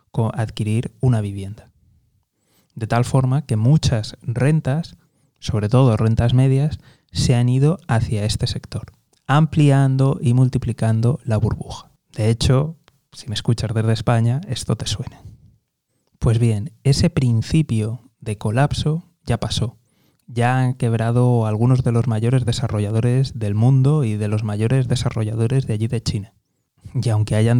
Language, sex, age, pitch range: Spanish, male, 20-39, 110-135 Hz